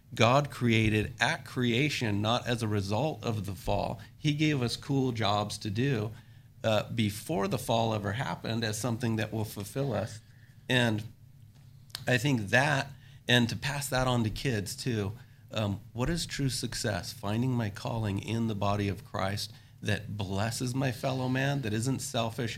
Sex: male